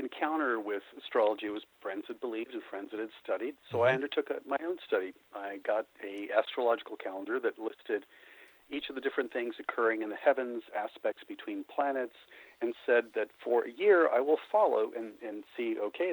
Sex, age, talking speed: male, 50-69, 185 wpm